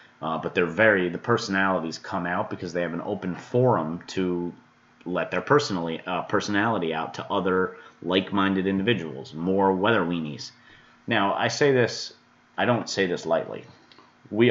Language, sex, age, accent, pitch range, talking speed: English, male, 30-49, American, 90-115 Hz, 155 wpm